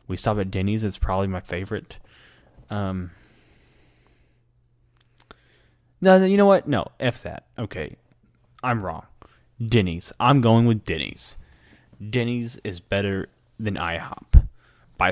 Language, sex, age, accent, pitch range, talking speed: English, male, 20-39, American, 95-120 Hz, 125 wpm